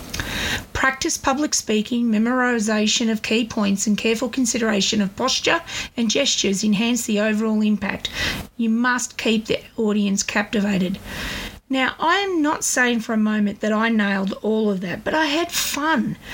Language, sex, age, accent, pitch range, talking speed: English, female, 40-59, Australian, 210-255 Hz, 155 wpm